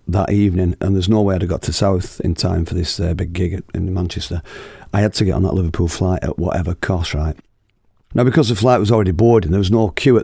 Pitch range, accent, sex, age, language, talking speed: 90-105 Hz, British, male, 50-69, English, 260 wpm